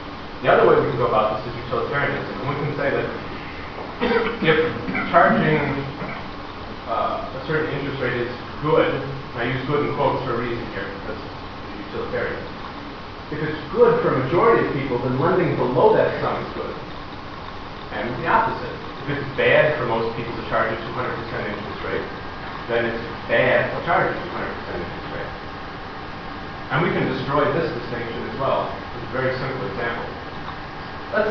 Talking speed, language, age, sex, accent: 175 wpm, Italian, 30-49, male, American